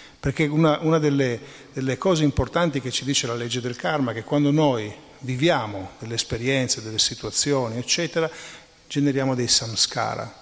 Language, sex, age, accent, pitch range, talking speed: Italian, male, 40-59, native, 115-150 Hz, 155 wpm